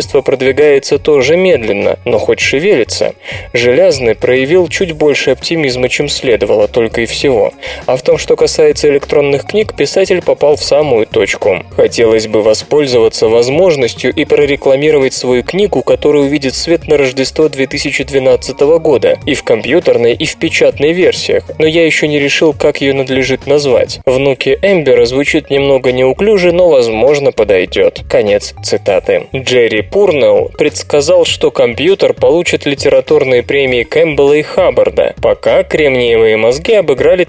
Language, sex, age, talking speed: Russian, male, 20-39, 135 wpm